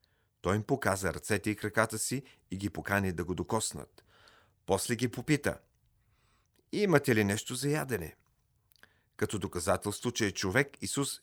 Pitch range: 95-125 Hz